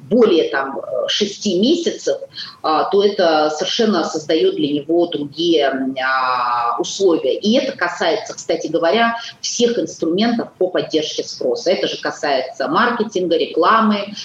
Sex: female